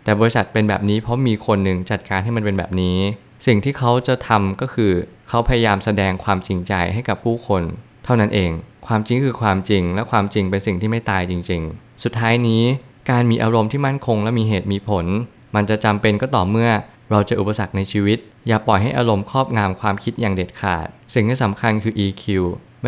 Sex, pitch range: male, 100-115 Hz